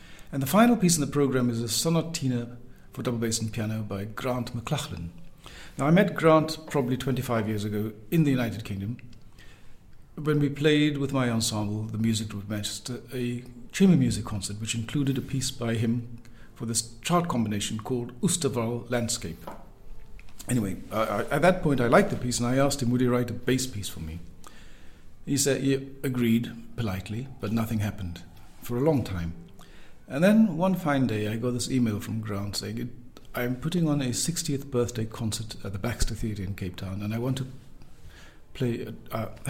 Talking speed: 185 wpm